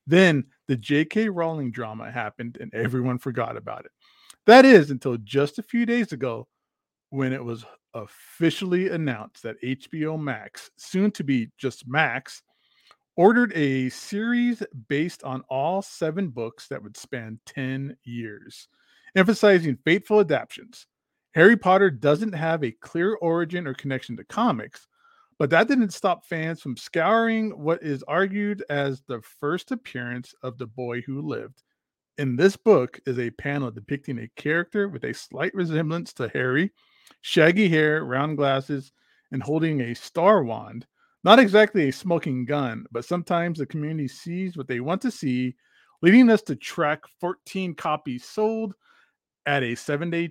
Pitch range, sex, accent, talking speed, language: 130-180 Hz, male, American, 150 wpm, English